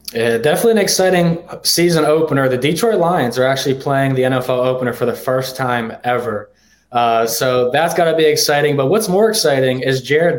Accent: American